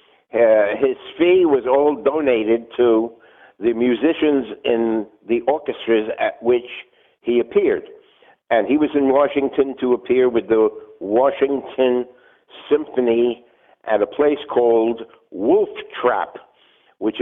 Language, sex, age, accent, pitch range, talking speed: English, male, 60-79, American, 120-185 Hz, 120 wpm